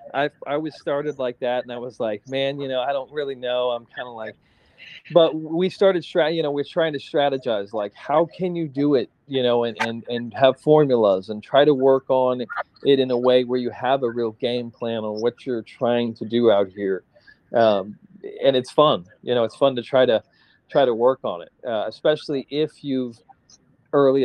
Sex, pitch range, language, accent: male, 120-150 Hz, English, American